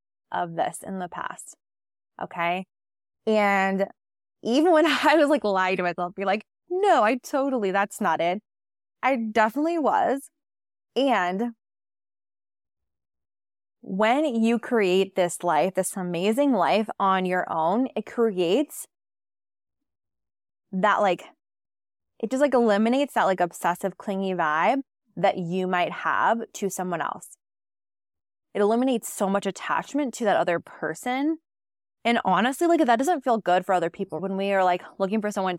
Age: 20-39